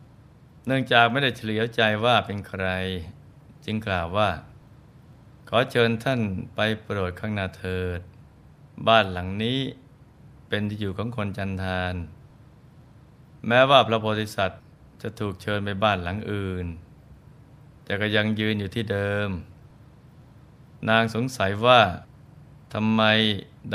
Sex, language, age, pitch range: male, Thai, 20-39, 100-130 Hz